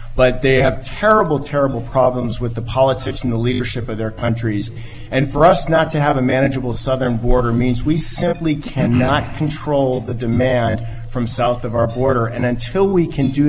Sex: male